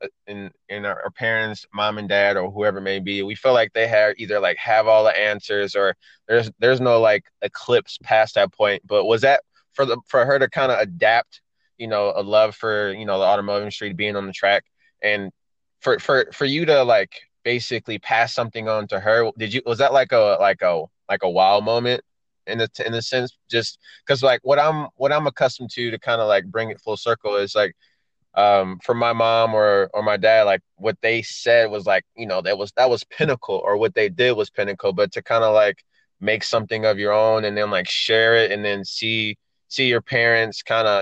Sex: male